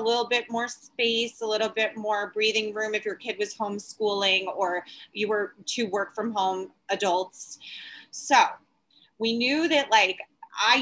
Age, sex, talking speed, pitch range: 30-49, female, 165 wpm, 190-225 Hz